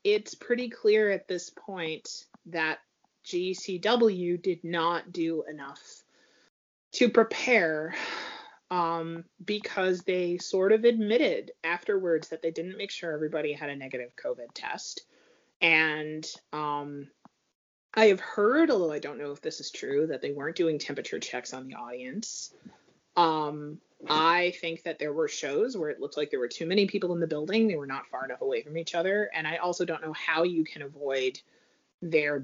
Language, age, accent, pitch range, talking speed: English, 30-49, American, 150-205 Hz, 170 wpm